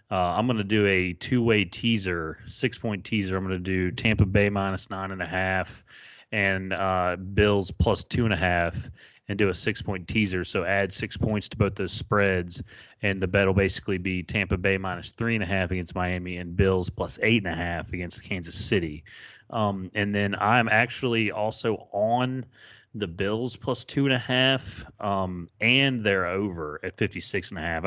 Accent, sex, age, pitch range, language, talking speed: American, male, 30-49, 90-110 Hz, English, 160 wpm